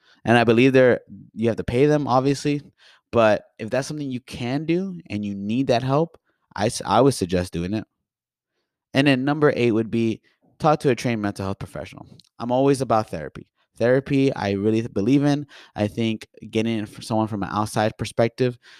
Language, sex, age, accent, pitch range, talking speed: English, male, 20-39, American, 105-135 Hz, 180 wpm